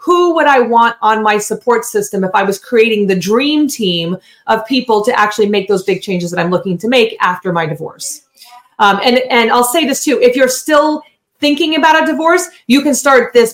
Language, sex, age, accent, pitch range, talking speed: English, female, 30-49, American, 195-240 Hz, 215 wpm